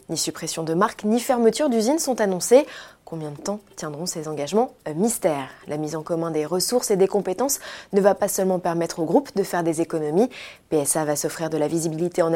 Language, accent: French, French